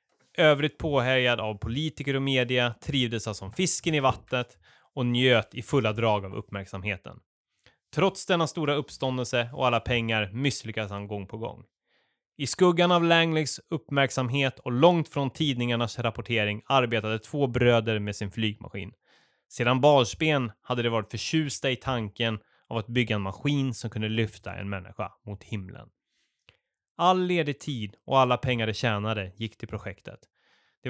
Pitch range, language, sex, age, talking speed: 110-140 Hz, Swedish, male, 20-39, 155 wpm